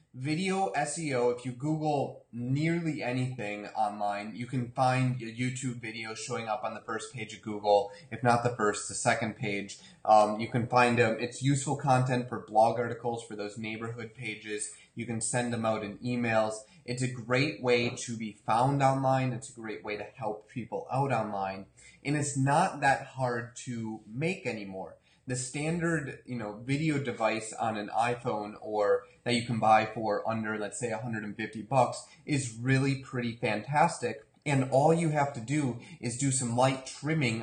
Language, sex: English, male